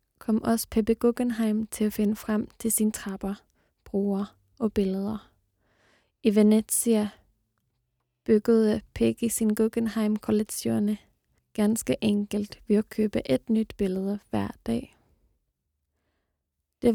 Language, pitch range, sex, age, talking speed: Danish, 190-220 Hz, female, 20-39, 110 wpm